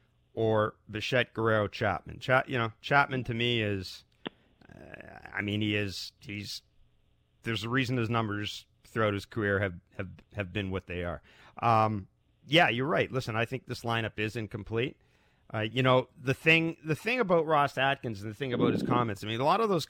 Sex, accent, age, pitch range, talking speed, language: male, American, 40-59, 105-135 Hz, 195 wpm, English